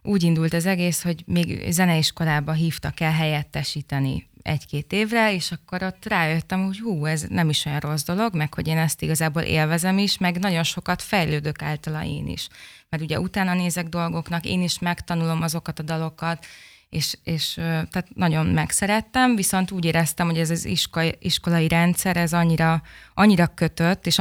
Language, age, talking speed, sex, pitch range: Hungarian, 20-39, 170 wpm, female, 160-180 Hz